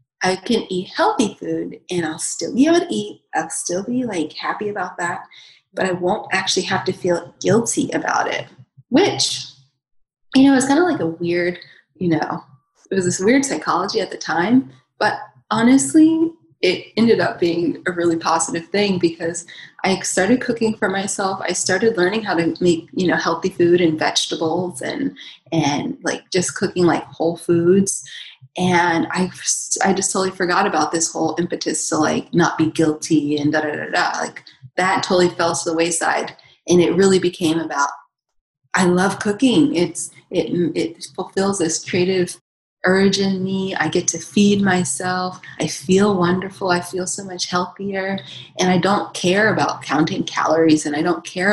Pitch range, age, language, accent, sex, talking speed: 160-195 Hz, 20-39, English, American, female, 180 wpm